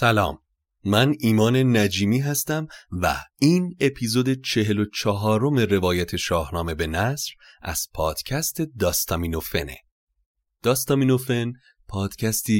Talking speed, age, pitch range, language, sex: 95 wpm, 30-49, 85-125 Hz, Persian, male